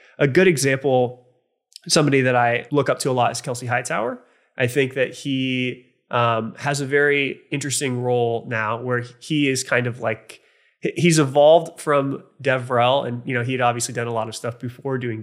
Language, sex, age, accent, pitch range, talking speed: English, male, 20-39, American, 120-145 Hz, 190 wpm